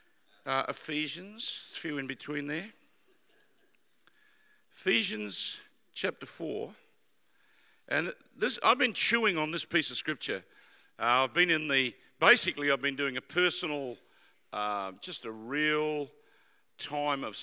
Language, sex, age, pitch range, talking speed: English, male, 50-69, 135-210 Hz, 125 wpm